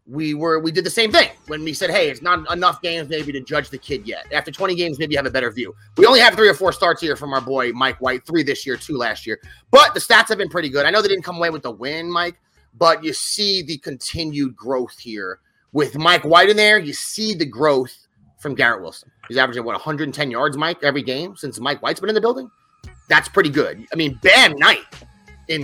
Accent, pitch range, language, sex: American, 140-195 Hz, English, male